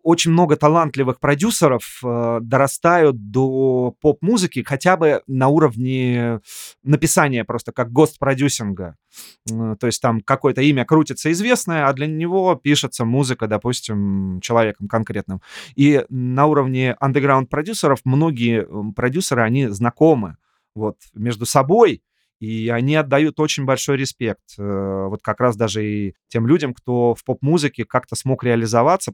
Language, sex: Russian, male